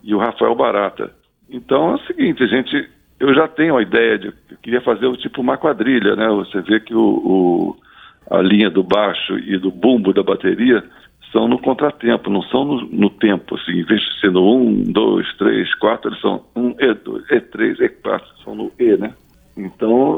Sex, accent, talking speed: male, Brazilian, 195 wpm